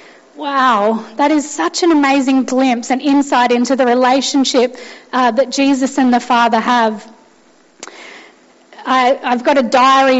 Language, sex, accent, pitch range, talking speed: English, female, Australian, 240-275 Hz, 135 wpm